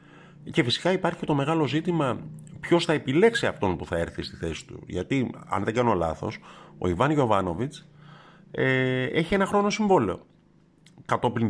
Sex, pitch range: male, 100-165 Hz